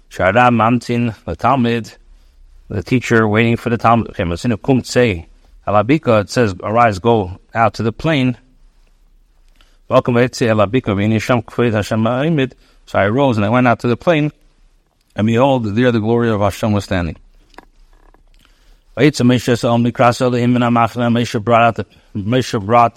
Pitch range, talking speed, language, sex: 105-125 Hz, 95 wpm, English, male